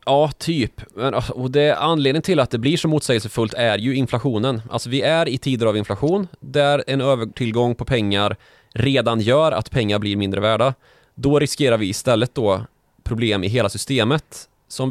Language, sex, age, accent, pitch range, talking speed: Swedish, male, 20-39, native, 105-135 Hz, 175 wpm